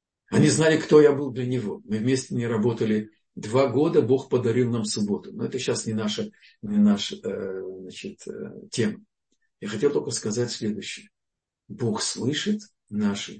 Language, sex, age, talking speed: Russian, male, 50-69, 150 wpm